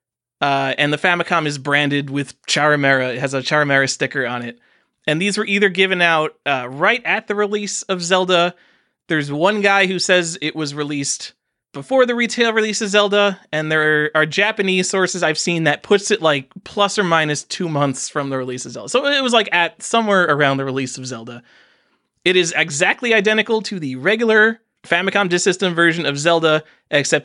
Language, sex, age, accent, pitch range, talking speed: English, male, 20-39, American, 135-200 Hz, 195 wpm